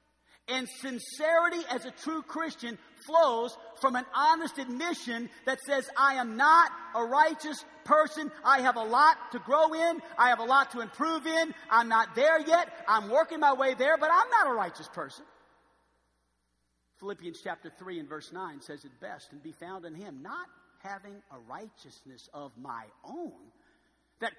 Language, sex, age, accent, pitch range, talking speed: English, male, 50-69, American, 235-325 Hz, 170 wpm